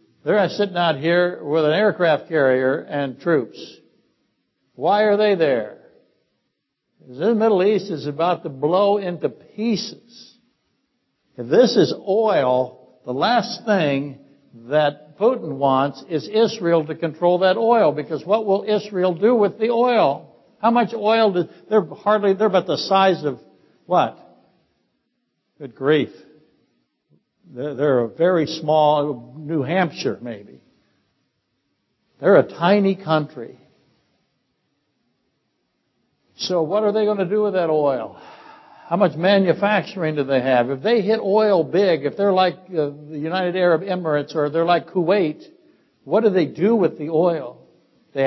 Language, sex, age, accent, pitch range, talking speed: English, male, 60-79, American, 155-210 Hz, 140 wpm